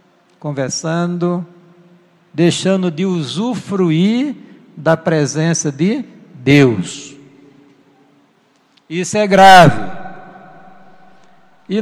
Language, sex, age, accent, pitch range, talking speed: Portuguese, male, 60-79, Brazilian, 185-230 Hz, 60 wpm